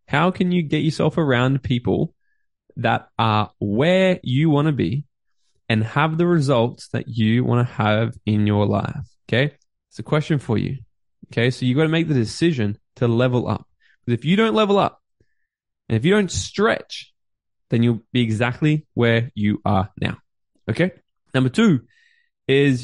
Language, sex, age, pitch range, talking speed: English, male, 20-39, 115-150 Hz, 175 wpm